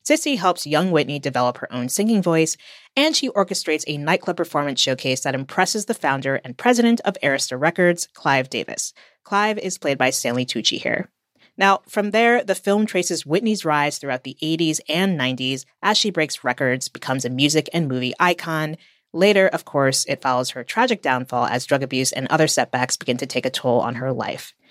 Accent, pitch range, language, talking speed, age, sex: American, 130-185 Hz, English, 190 wpm, 30-49, female